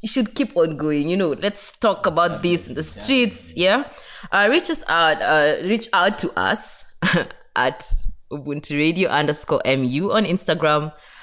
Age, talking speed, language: 20-39, 160 wpm, English